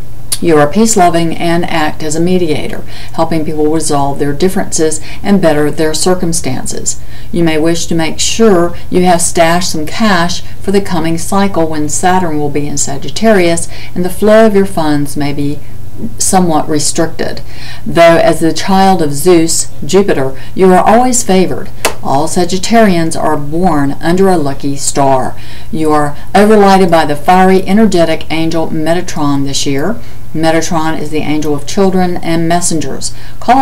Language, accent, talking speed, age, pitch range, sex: English, American, 155 wpm, 60-79, 150-185 Hz, female